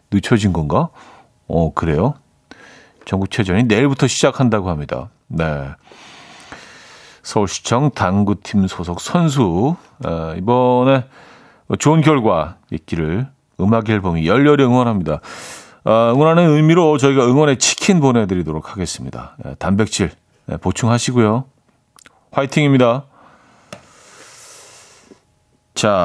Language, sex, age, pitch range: Korean, male, 40-59, 105-150 Hz